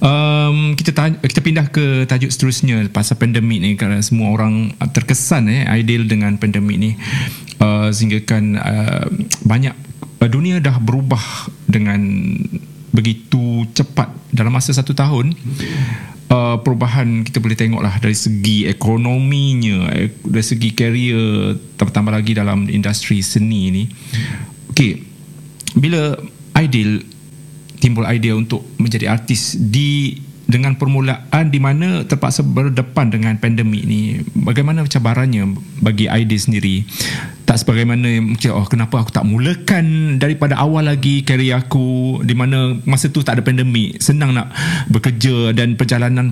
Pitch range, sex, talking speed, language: 110-140 Hz, male, 130 wpm, Malay